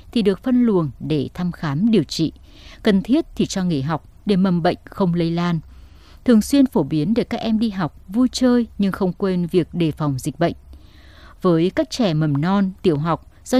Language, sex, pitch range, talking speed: Vietnamese, female, 160-230 Hz, 210 wpm